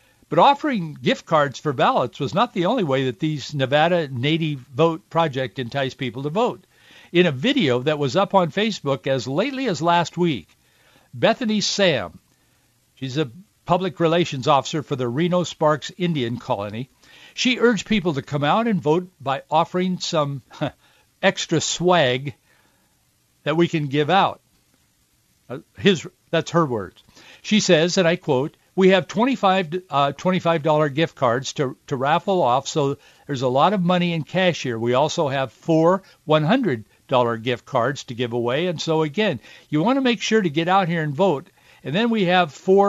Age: 60-79